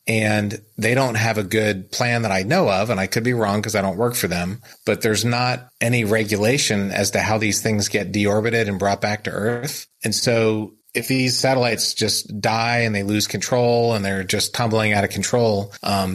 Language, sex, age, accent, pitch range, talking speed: English, male, 30-49, American, 100-115 Hz, 215 wpm